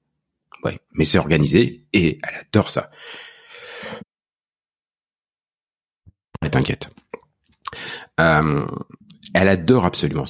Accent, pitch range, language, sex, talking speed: French, 90-140 Hz, French, male, 80 wpm